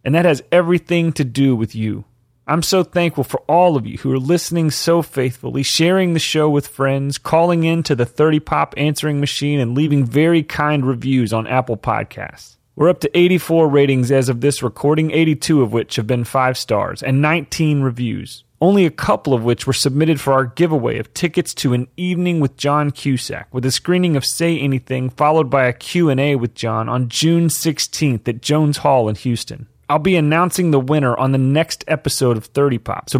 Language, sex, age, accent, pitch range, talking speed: English, male, 30-49, American, 125-160 Hz, 200 wpm